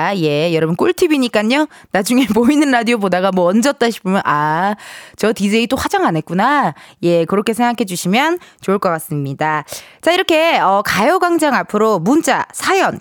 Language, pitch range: Korean, 185-290 Hz